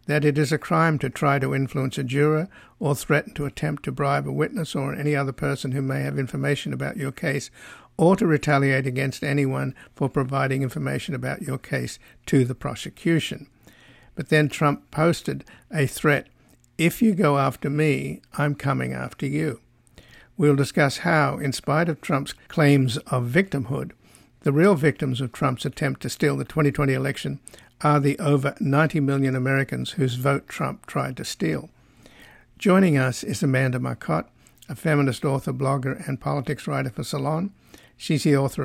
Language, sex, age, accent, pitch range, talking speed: English, male, 60-79, American, 135-150 Hz, 170 wpm